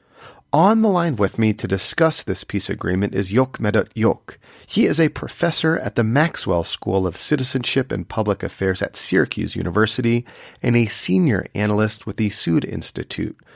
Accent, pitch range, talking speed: American, 100-130 Hz, 170 wpm